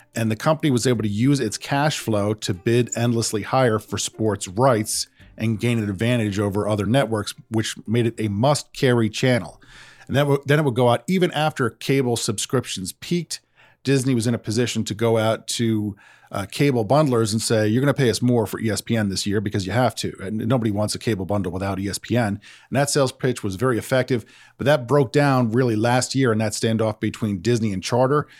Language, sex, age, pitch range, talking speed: English, male, 40-59, 105-130 Hz, 205 wpm